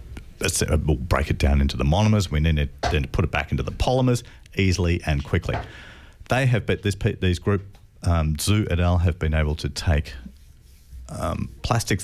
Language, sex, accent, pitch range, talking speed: English, male, Australian, 75-95 Hz, 185 wpm